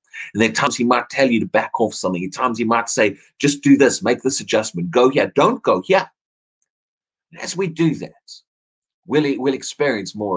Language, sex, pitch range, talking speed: English, male, 115-175 Hz, 210 wpm